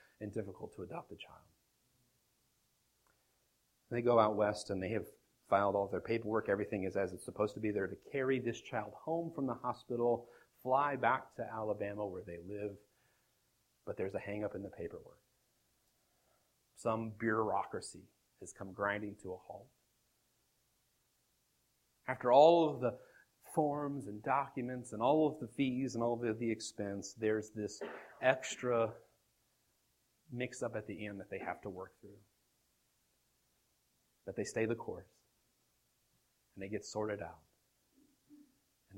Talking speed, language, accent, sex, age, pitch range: 150 wpm, English, American, male, 40-59, 100-120 Hz